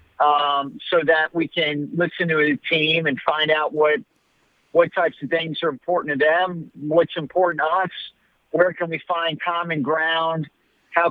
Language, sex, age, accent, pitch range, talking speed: English, male, 50-69, American, 145-170 Hz, 175 wpm